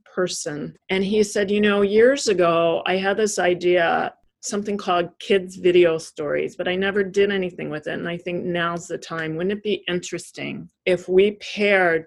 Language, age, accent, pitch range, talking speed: English, 40-59, American, 175-200 Hz, 185 wpm